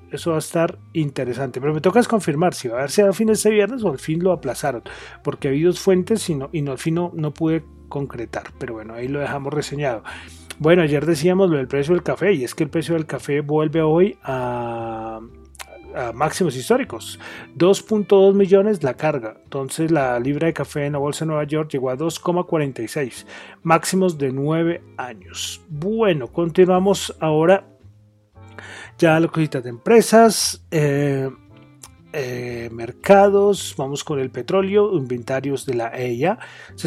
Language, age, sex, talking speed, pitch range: Spanish, 30-49, male, 175 wpm, 130-170 Hz